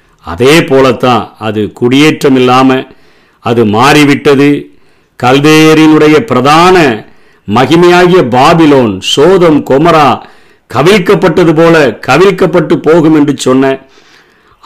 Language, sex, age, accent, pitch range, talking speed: Tamil, male, 50-69, native, 120-150 Hz, 80 wpm